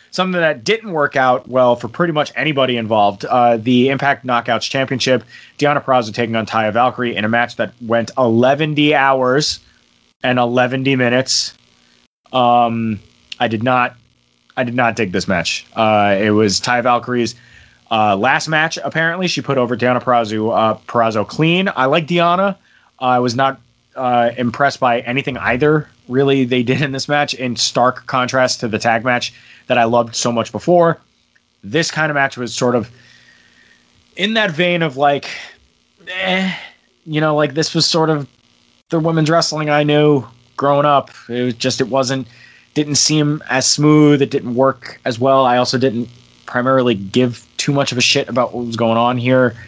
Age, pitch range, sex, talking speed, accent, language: 30-49, 120-145 Hz, male, 175 wpm, American, English